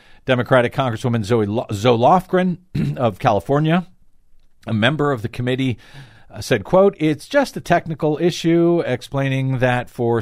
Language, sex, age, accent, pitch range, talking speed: English, male, 50-69, American, 110-150 Hz, 135 wpm